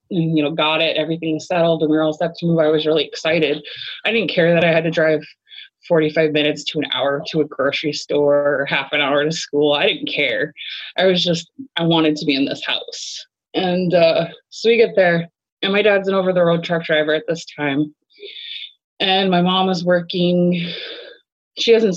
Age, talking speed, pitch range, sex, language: 20-39, 215 wpm, 155-180 Hz, female, English